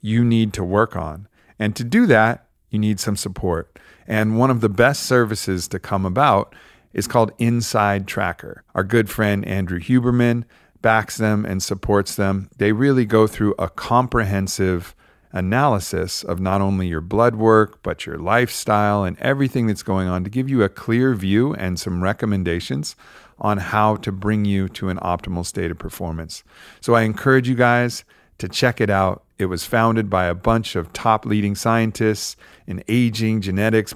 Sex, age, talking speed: male, 50-69, 175 wpm